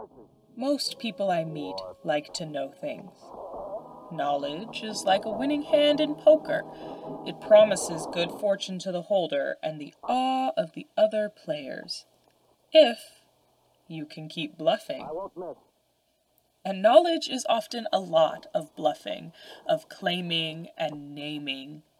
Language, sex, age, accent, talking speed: English, female, 20-39, American, 130 wpm